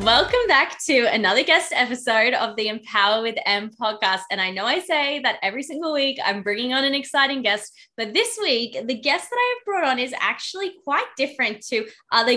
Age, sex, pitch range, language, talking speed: 20-39, female, 205-275 Hz, English, 210 wpm